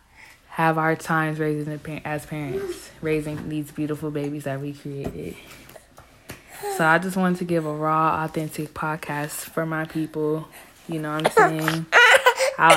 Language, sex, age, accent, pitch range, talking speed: English, female, 20-39, American, 150-175 Hz, 150 wpm